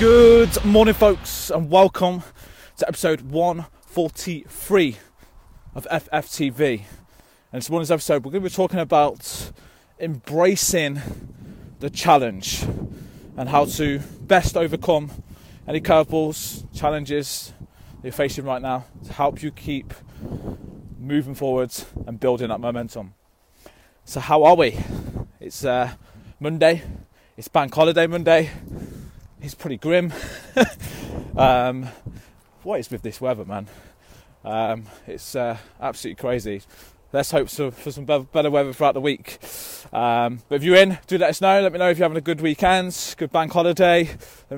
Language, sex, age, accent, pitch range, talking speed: English, male, 20-39, British, 120-160 Hz, 140 wpm